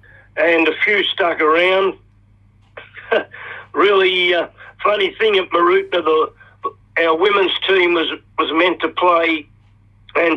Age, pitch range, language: 50-69, 160-205 Hz, English